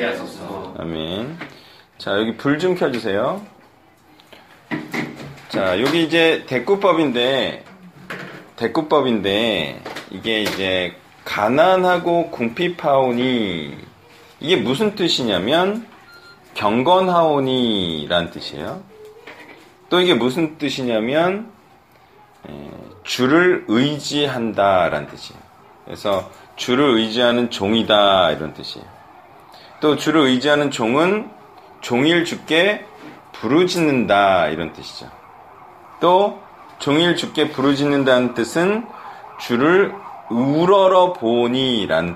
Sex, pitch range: male, 115-180 Hz